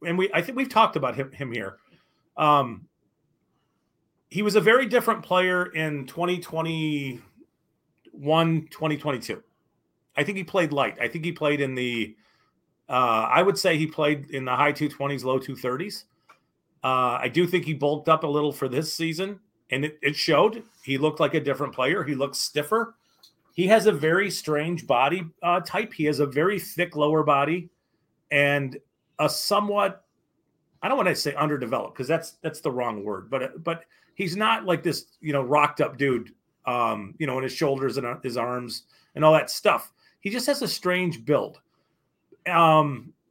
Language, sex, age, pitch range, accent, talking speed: English, male, 40-59, 140-180 Hz, American, 175 wpm